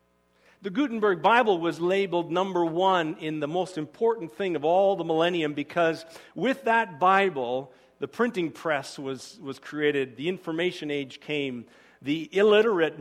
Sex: male